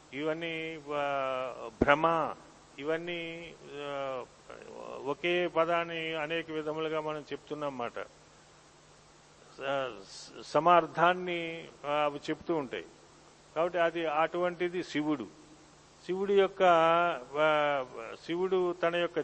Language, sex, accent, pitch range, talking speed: Telugu, male, native, 145-170 Hz, 70 wpm